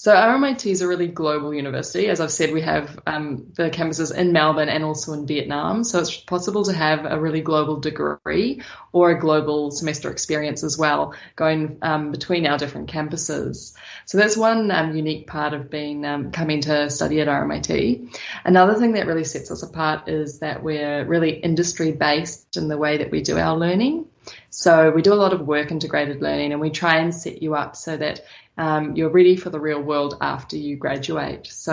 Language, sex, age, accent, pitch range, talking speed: Dutch, female, 20-39, Australian, 150-165 Hz, 200 wpm